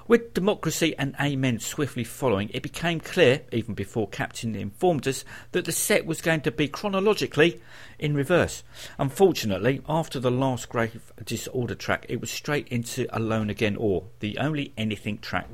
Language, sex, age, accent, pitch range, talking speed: English, male, 50-69, British, 110-150 Hz, 160 wpm